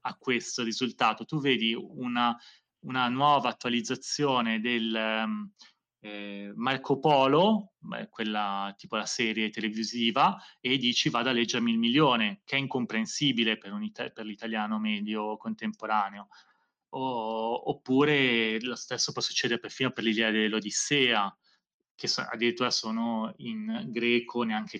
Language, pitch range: Italian, 115-140 Hz